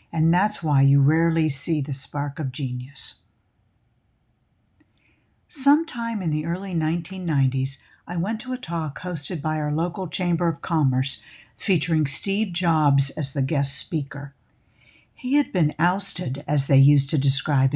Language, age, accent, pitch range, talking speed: English, 50-69, American, 140-175 Hz, 145 wpm